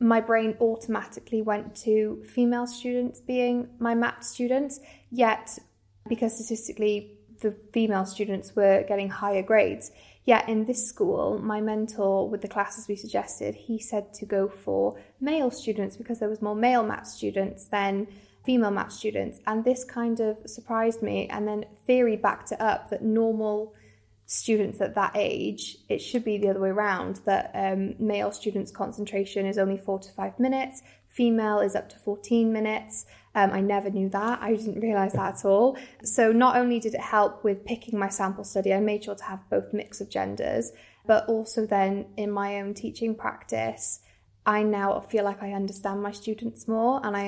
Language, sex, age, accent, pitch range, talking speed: English, female, 10-29, British, 195-225 Hz, 180 wpm